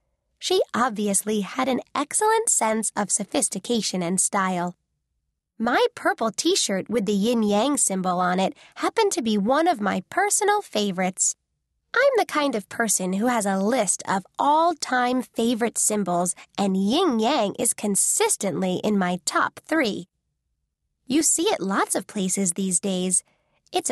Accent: American